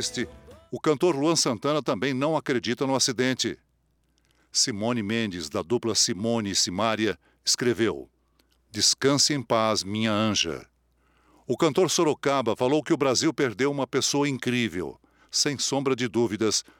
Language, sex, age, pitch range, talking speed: Portuguese, male, 60-79, 110-135 Hz, 130 wpm